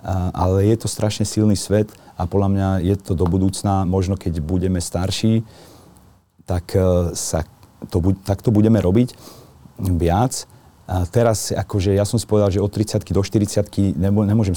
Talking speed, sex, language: 155 wpm, male, Slovak